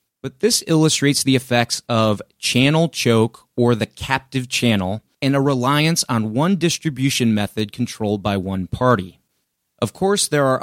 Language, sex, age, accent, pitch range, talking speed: English, male, 30-49, American, 110-135 Hz, 150 wpm